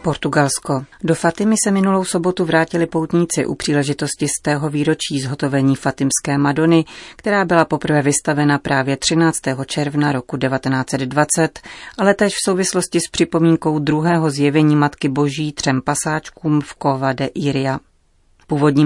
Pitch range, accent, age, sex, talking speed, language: 140-165 Hz, native, 30-49, female, 135 wpm, Czech